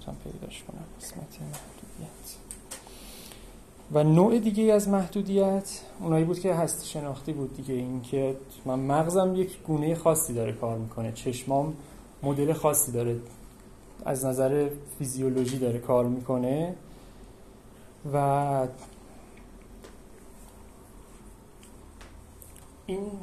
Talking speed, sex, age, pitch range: 95 wpm, male, 30-49, 125-155 Hz